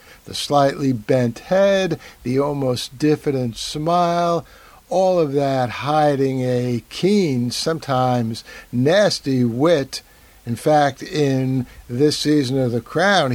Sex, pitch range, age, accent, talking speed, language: male, 120-155 Hz, 60-79, American, 110 wpm, English